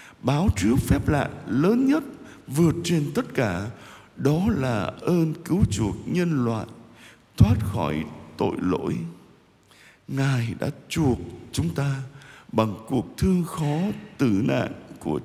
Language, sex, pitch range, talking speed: Vietnamese, male, 105-140 Hz, 130 wpm